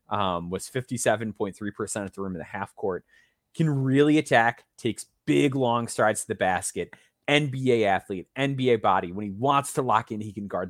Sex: male